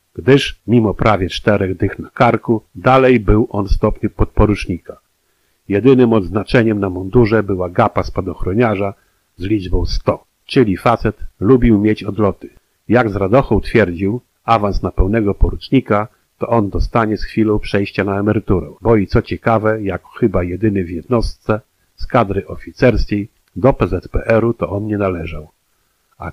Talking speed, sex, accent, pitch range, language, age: 140 wpm, male, native, 95-115 Hz, Polish, 50-69